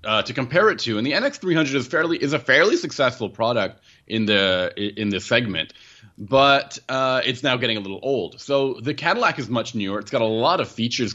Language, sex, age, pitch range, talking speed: English, male, 30-49, 100-135 Hz, 220 wpm